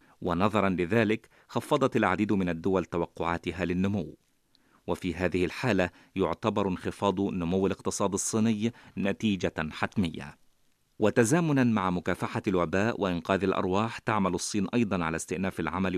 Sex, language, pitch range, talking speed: male, Arabic, 90-110 Hz, 115 wpm